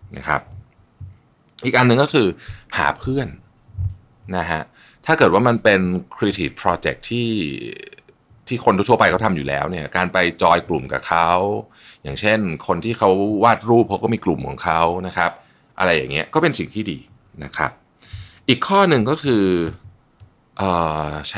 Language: Thai